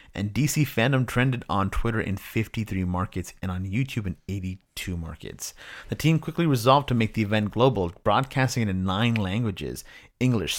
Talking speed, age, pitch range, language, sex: 170 wpm, 30-49, 95-115 Hz, English, male